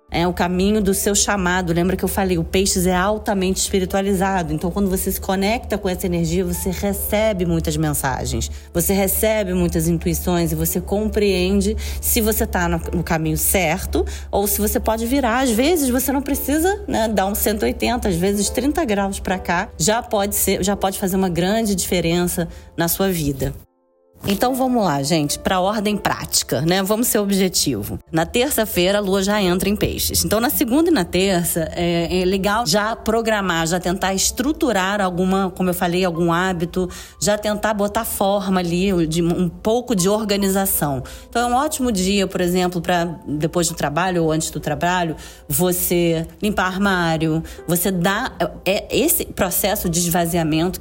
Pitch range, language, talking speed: 170-210 Hz, Portuguese, 170 wpm